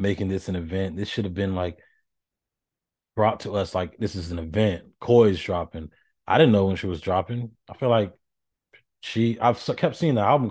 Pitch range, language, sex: 90-110 Hz, English, male